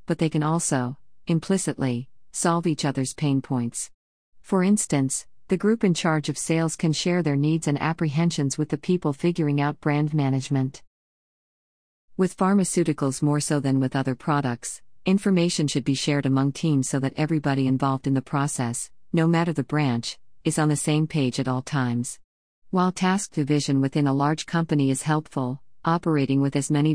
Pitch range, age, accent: 130-160 Hz, 50-69, American